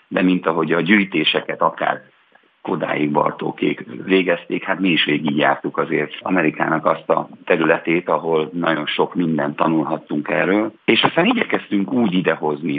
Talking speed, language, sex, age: 135 wpm, Hungarian, male, 50-69